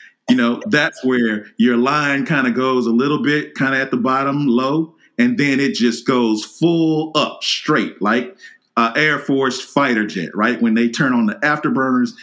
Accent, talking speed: American, 190 wpm